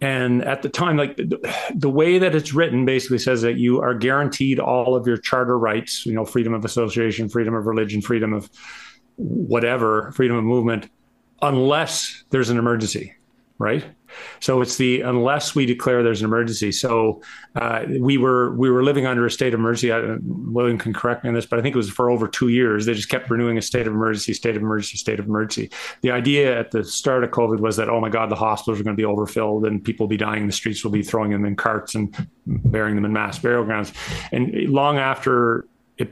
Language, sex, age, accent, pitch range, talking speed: English, male, 40-59, American, 110-125 Hz, 225 wpm